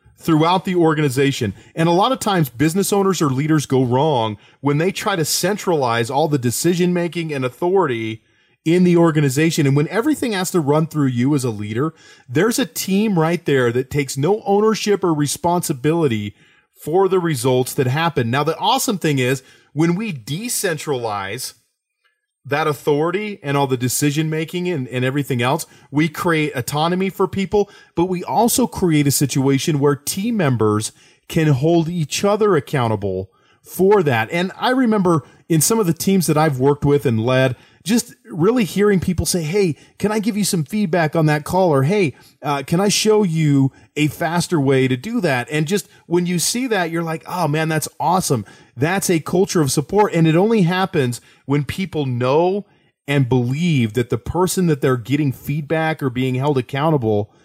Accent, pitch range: American, 135-180 Hz